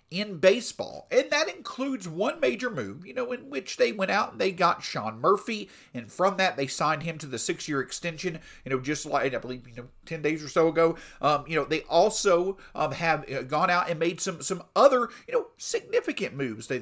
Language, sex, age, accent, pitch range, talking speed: English, male, 50-69, American, 140-195 Hz, 225 wpm